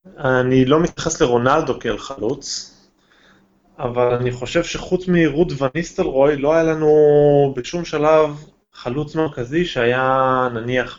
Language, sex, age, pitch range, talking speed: Hebrew, male, 20-39, 120-155 Hz, 115 wpm